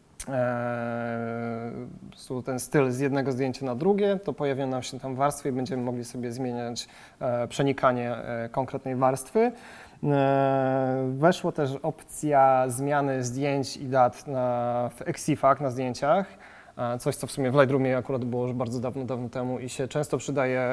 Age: 20-39